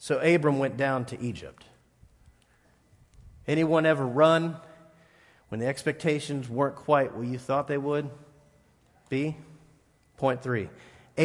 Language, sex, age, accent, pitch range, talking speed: English, male, 40-59, American, 125-165 Hz, 115 wpm